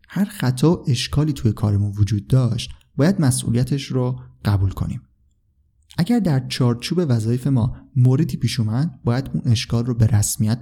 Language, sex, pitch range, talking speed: Persian, male, 110-145 Hz, 140 wpm